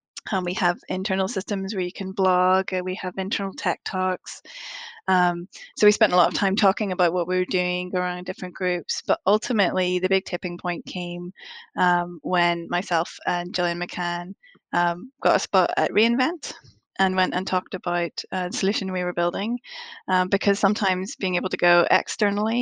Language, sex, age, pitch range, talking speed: English, female, 20-39, 180-200 Hz, 190 wpm